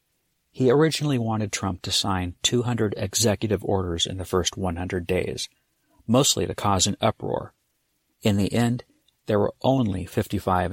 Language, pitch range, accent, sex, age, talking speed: English, 95-115 Hz, American, male, 50-69, 145 wpm